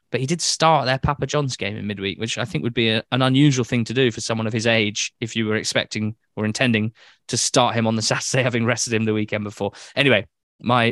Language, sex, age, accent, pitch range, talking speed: English, male, 20-39, British, 110-140 Hz, 255 wpm